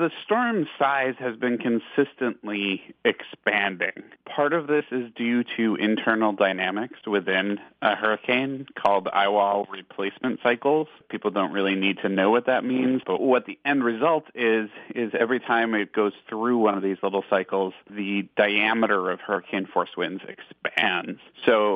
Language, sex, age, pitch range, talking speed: English, male, 40-59, 100-125 Hz, 155 wpm